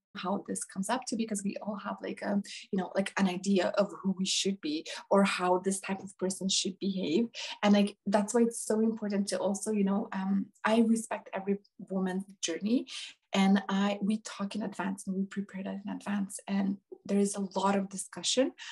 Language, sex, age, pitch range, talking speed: English, female, 20-39, 200-240 Hz, 210 wpm